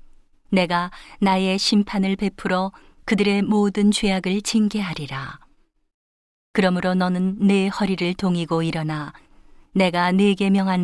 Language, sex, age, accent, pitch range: Korean, female, 40-59, native, 170-200 Hz